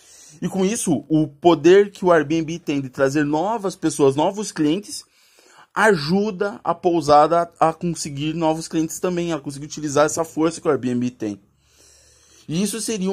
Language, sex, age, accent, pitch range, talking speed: Portuguese, male, 20-39, Brazilian, 155-190 Hz, 160 wpm